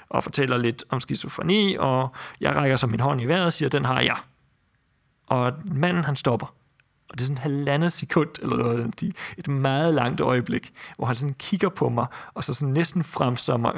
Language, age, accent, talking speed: Danish, 40-59, native, 200 wpm